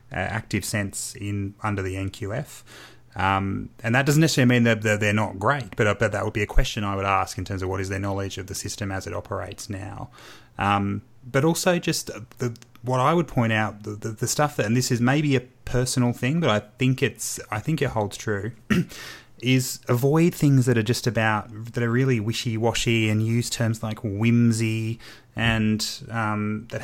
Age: 30-49